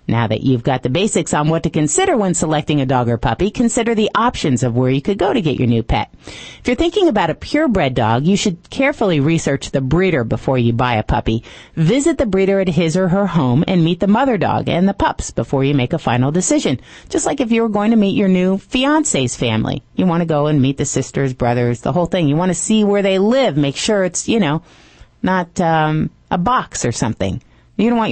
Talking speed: 245 wpm